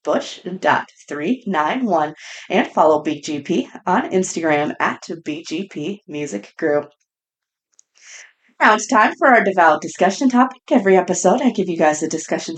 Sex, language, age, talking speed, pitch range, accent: female, English, 30-49, 145 wpm, 155-235 Hz, American